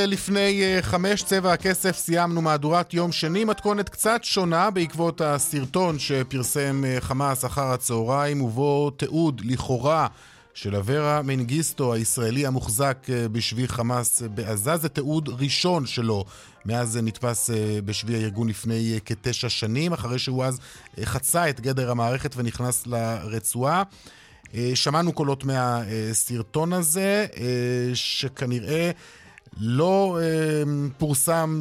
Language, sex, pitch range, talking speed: Hebrew, male, 120-155 Hz, 105 wpm